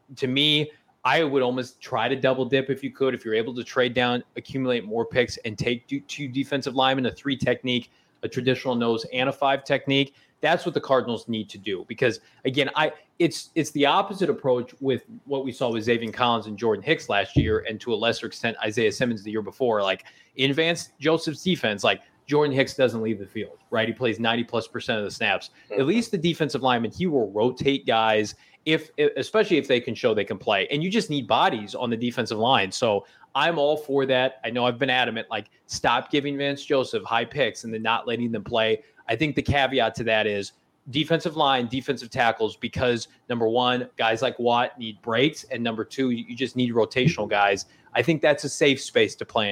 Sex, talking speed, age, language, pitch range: male, 215 wpm, 20-39, English, 115-145 Hz